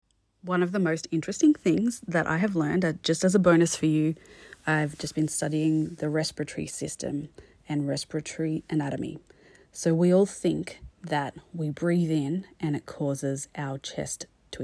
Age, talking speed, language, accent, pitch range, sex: 30-49, 165 wpm, English, Australian, 145-170 Hz, female